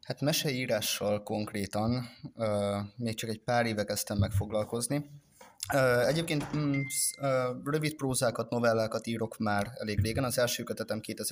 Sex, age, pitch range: male, 20-39, 105-125 Hz